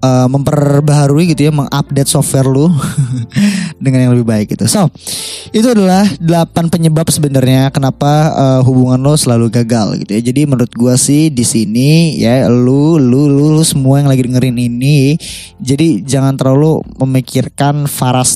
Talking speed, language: 155 wpm, Indonesian